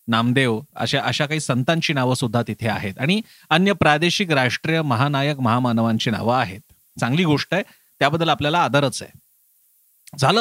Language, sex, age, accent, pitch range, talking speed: Marathi, male, 30-49, native, 130-185 Hz, 145 wpm